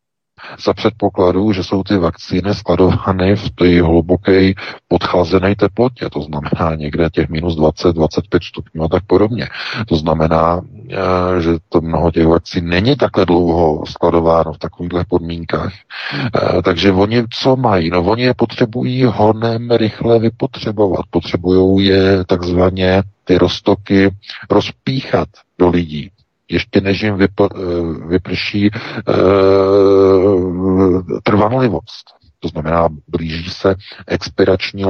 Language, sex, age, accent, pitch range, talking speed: Czech, male, 50-69, native, 80-100 Hz, 115 wpm